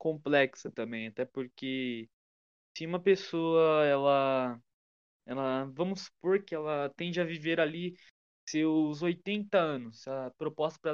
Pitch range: 135-190 Hz